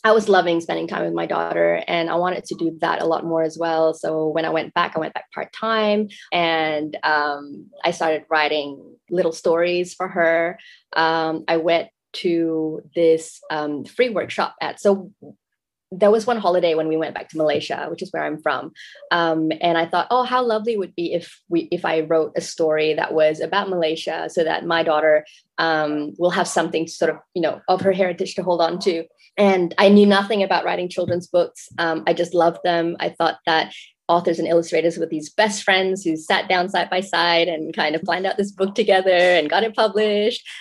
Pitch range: 160-190 Hz